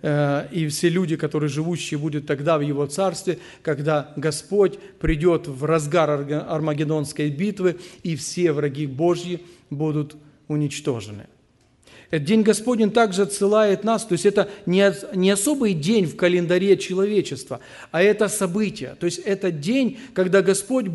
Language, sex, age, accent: Russian, male, 40-59, native